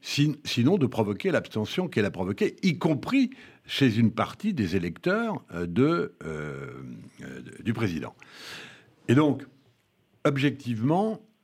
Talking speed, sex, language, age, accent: 115 wpm, male, French, 60-79, French